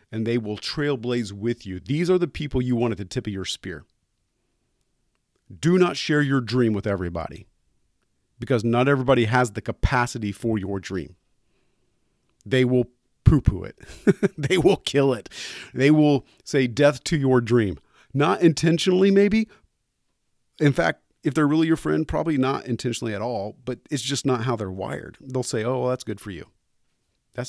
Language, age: English, 40-59